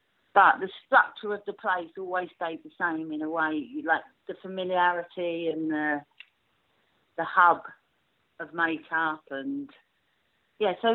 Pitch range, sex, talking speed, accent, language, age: 165-230 Hz, female, 135 wpm, British, English, 40-59